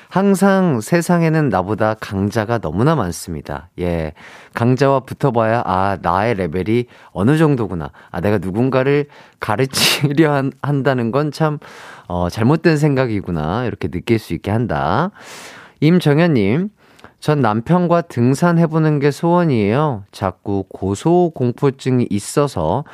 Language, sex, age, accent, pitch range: Korean, male, 30-49, native, 110-170 Hz